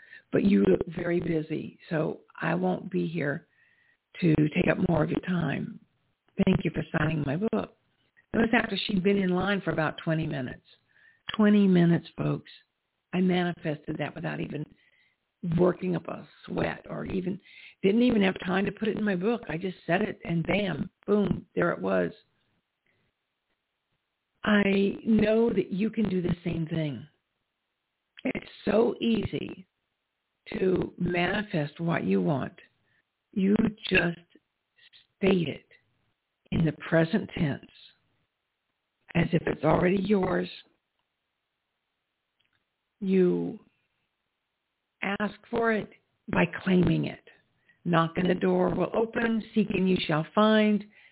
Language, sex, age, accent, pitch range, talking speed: English, female, 60-79, American, 170-215 Hz, 135 wpm